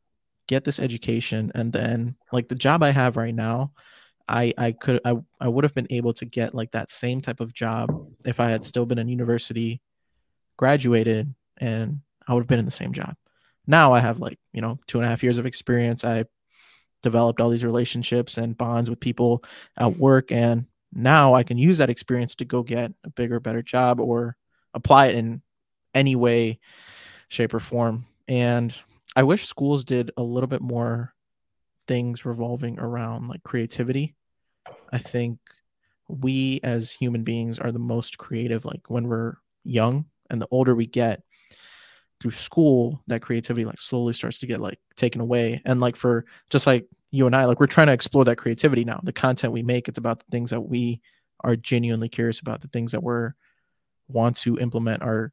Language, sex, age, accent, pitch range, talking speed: English, male, 20-39, American, 115-130 Hz, 190 wpm